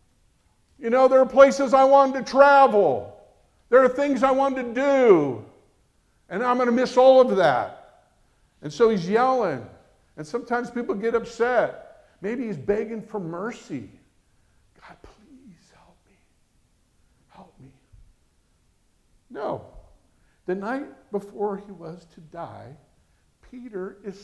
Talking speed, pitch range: 135 wpm, 175-250 Hz